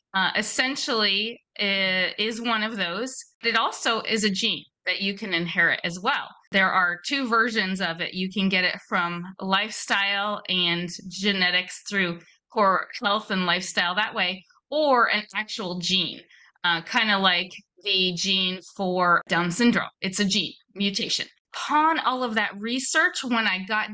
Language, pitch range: English, 190-240 Hz